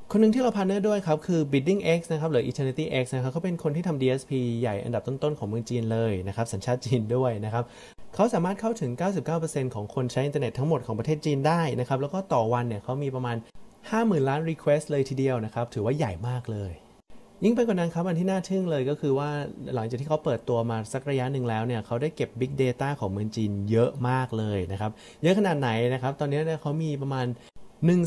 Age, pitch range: 20-39, 120-155 Hz